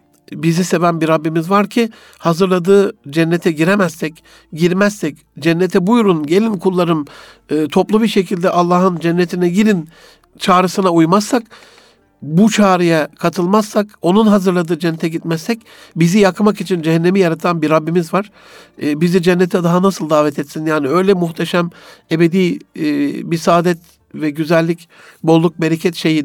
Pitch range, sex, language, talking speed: 160-190 Hz, male, Turkish, 130 wpm